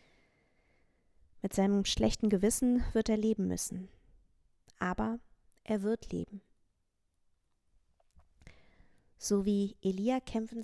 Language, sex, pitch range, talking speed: German, female, 190-215 Hz, 90 wpm